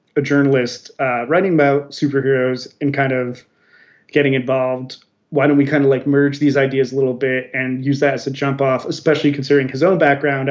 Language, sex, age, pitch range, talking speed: English, male, 20-39, 135-155 Hz, 200 wpm